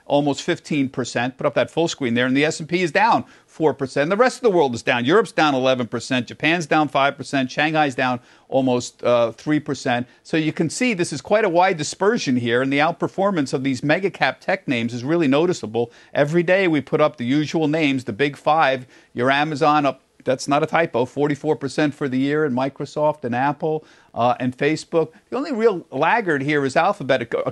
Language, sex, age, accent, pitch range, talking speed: English, male, 50-69, American, 130-170 Hz, 205 wpm